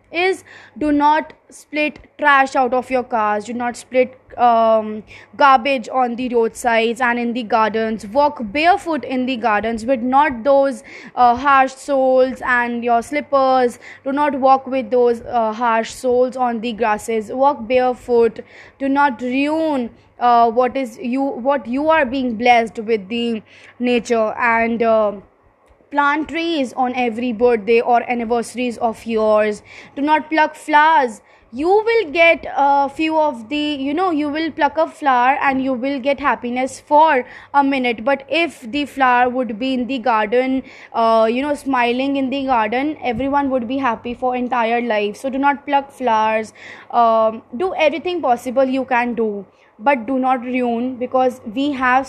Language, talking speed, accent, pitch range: English, 165 wpm, Indian, 235-275 Hz